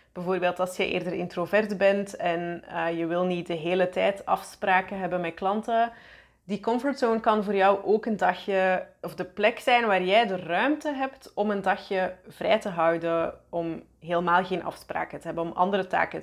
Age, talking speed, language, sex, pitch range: 20-39, 185 wpm, Dutch, female, 175-200 Hz